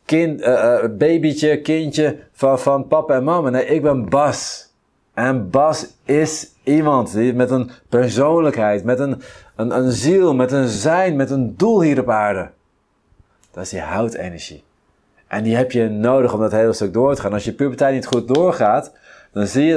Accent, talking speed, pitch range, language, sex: Dutch, 185 wpm, 105-135 Hz, Dutch, male